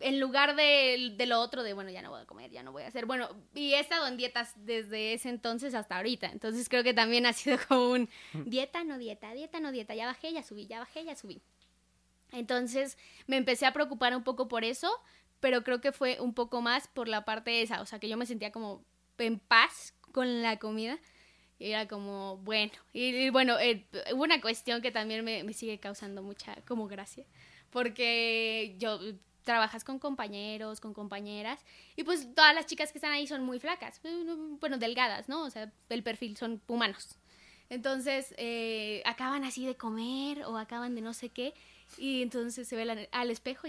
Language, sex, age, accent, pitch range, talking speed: Spanish, female, 10-29, Mexican, 225-280 Hz, 205 wpm